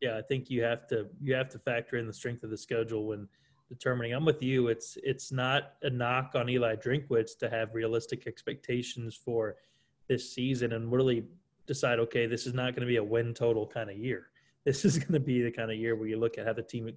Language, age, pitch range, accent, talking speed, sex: English, 20-39, 115-130 Hz, American, 245 wpm, male